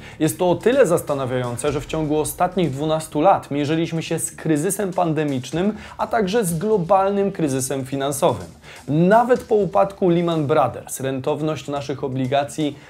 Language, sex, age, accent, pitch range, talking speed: Polish, male, 20-39, native, 130-175 Hz, 140 wpm